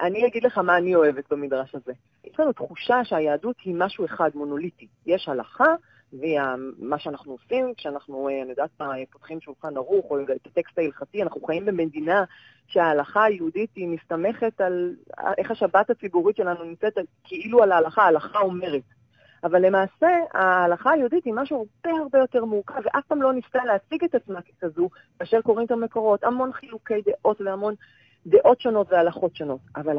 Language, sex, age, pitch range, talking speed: Hebrew, female, 30-49, 165-245 Hz, 160 wpm